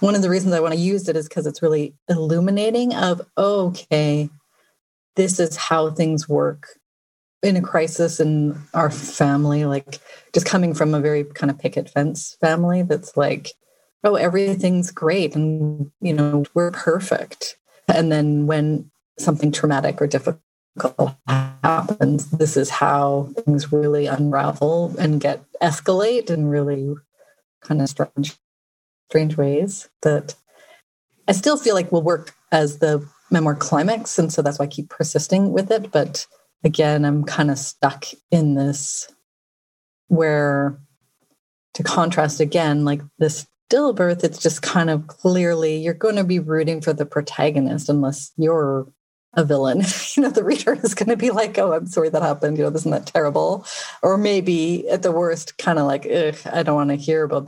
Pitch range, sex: 145-175 Hz, female